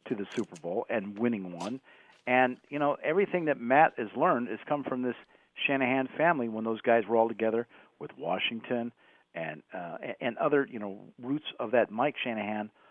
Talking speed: 185 wpm